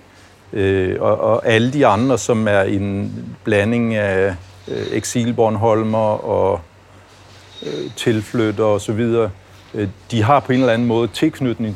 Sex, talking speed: male, 135 wpm